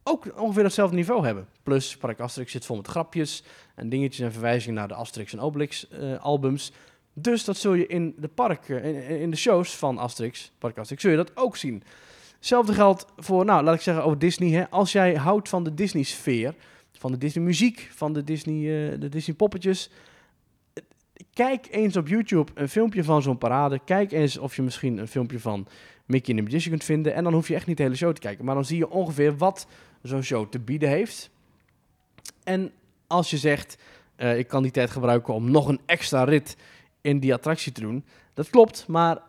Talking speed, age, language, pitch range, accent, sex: 210 wpm, 20-39, Dutch, 130-170 Hz, Dutch, male